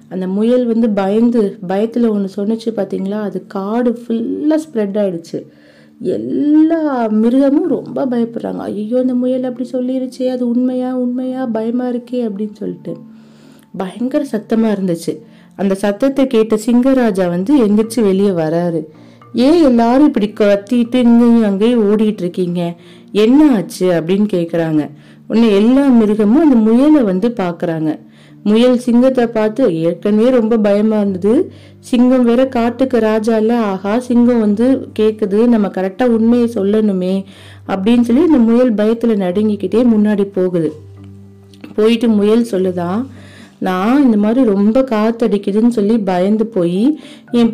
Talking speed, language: 95 wpm, Tamil